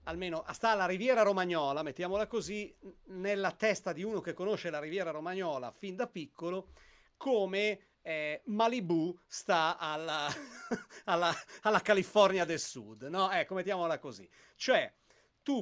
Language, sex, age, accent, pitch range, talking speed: Italian, male, 40-59, native, 155-215 Hz, 125 wpm